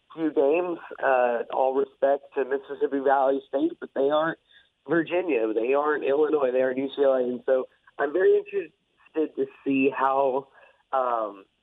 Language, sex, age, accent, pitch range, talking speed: English, male, 30-49, American, 125-155 Hz, 145 wpm